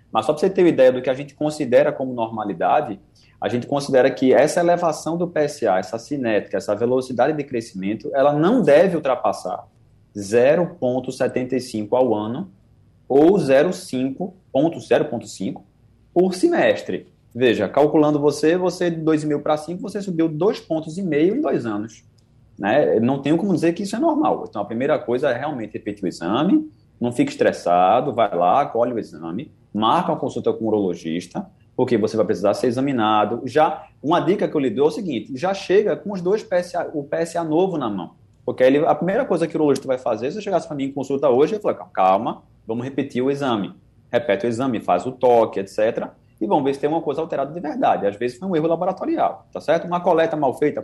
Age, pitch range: 20-39, 120-170 Hz